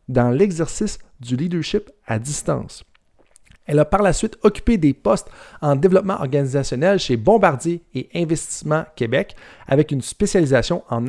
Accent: Canadian